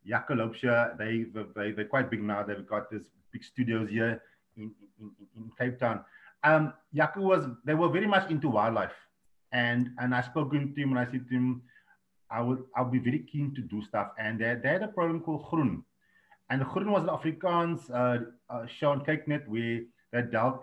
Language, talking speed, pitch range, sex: English, 200 wpm, 125-165 Hz, male